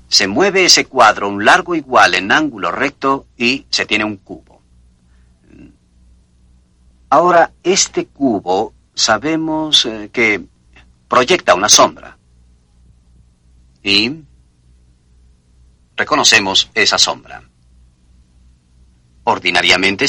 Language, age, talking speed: Spanish, 50-69, 85 wpm